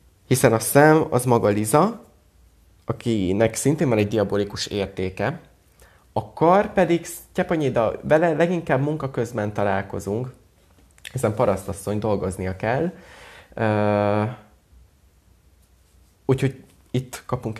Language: Hungarian